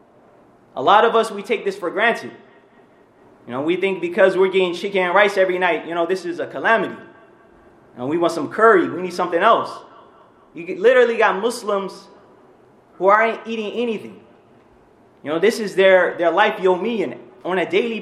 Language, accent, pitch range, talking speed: English, American, 185-220 Hz, 205 wpm